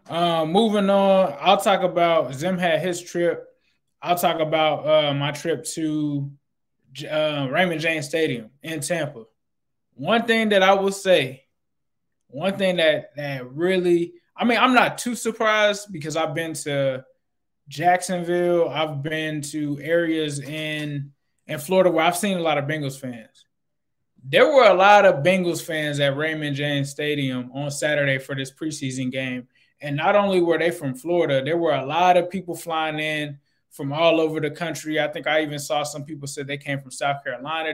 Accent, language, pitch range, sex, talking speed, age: American, English, 145-175 Hz, male, 175 wpm, 20-39